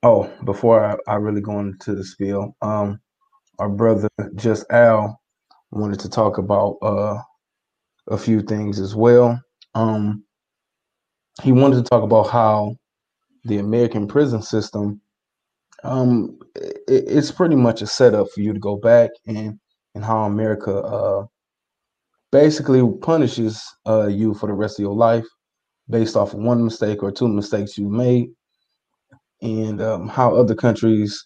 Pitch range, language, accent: 105-115 Hz, English, American